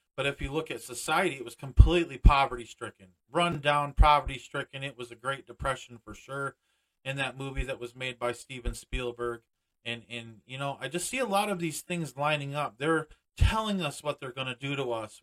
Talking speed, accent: 215 wpm, American